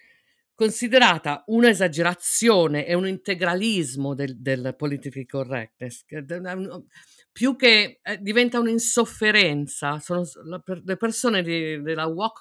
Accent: native